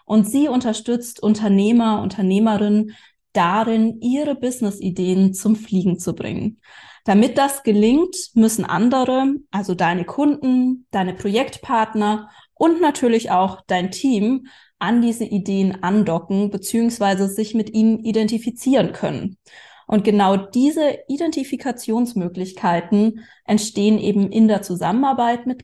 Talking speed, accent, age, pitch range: 110 wpm, German, 20-39, 195-255 Hz